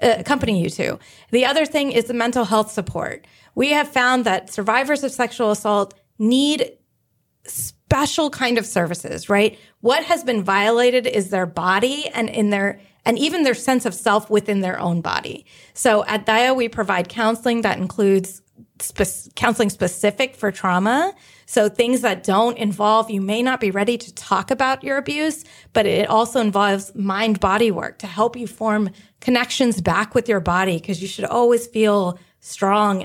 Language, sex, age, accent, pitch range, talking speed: English, female, 30-49, American, 195-240 Hz, 170 wpm